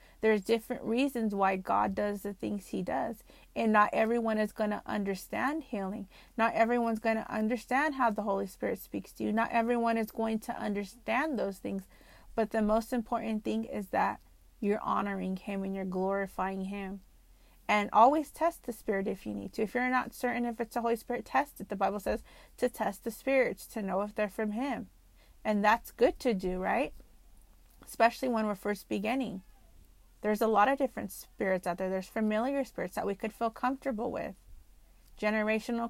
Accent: American